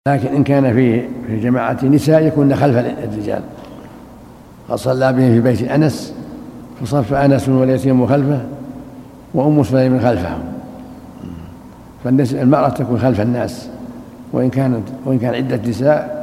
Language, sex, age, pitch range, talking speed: Arabic, male, 60-79, 120-140 Hz, 125 wpm